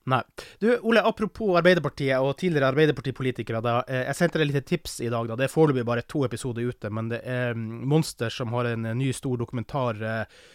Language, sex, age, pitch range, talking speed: English, male, 20-39, 120-160 Hz, 205 wpm